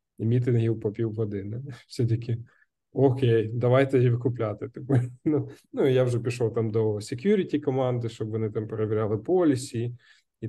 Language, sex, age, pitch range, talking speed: Ukrainian, male, 20-39, 110-125 Hz, 135 wpm